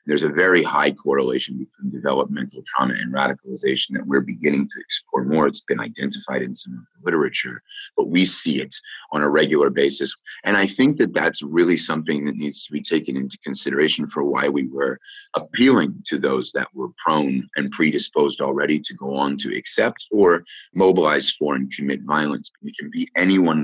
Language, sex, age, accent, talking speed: English, male, 30-49, American, 190 wpm